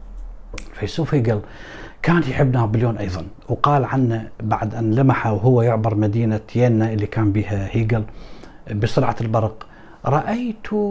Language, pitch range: Arabic, 115-150 Hz